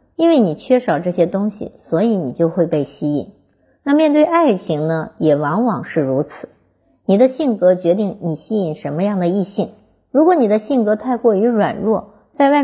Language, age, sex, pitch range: Chinese, 50-69, male, 175-245 Hz